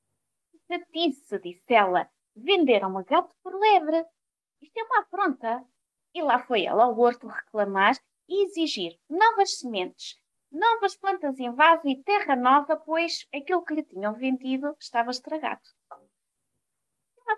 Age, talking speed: 20-39, 135 wpm